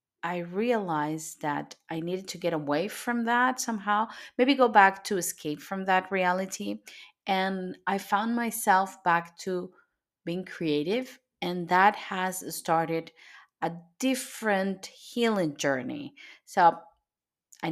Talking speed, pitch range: 125 wpm, 170-225 Hz